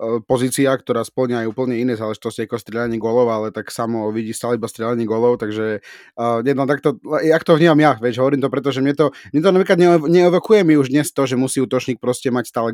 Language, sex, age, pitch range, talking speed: Slovak, male, 30-49, 120-145 Hz, 215 wpm